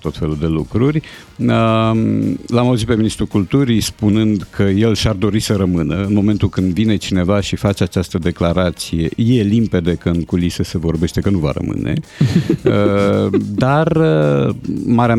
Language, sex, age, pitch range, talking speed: Romanian, male, 50-69, 90-120 Hz, 150 wpm